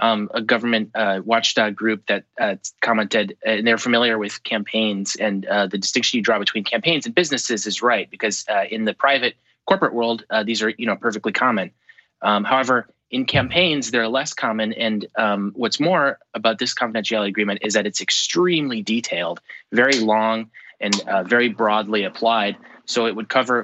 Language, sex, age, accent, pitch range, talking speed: English, male, 20-39, American, 110-125 Hz, 185 wpm